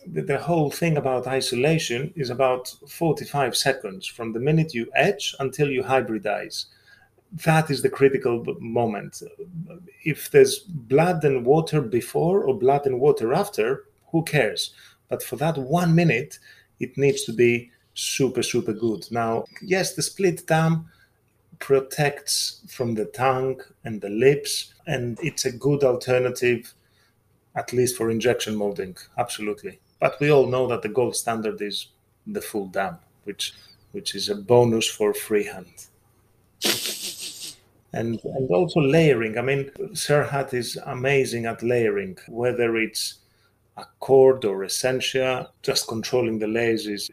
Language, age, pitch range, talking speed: German, 30-49, 115-150 Hz, 140 wpm